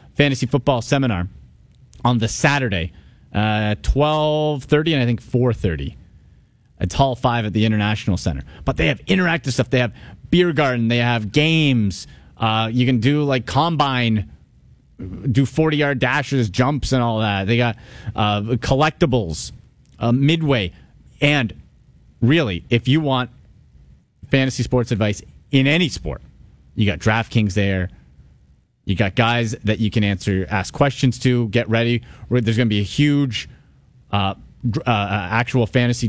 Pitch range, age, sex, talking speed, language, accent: 105-135 Hz, 30-49, male, 145 wpm, English, American